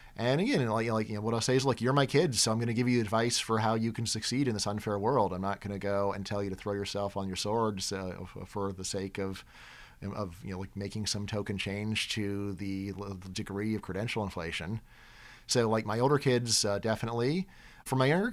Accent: American